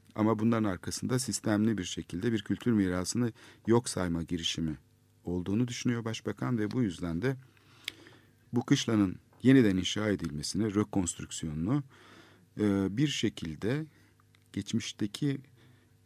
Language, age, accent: Turkish, 50-69, native